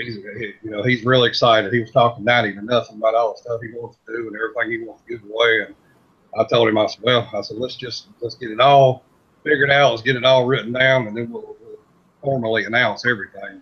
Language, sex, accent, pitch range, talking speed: English, male, American, 110-135 Hz, 245 wpm